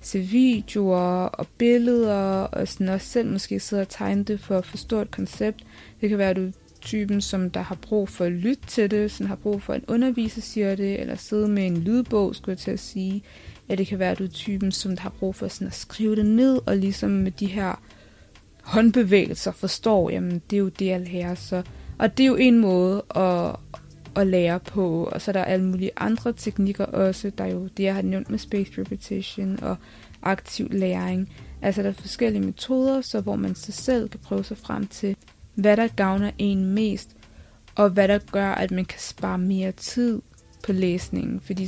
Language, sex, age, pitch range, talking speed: Danish, female, 20-39, 185-215 Hz, 210 wpm